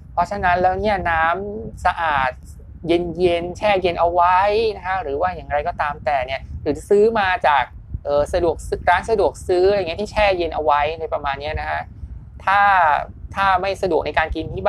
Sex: male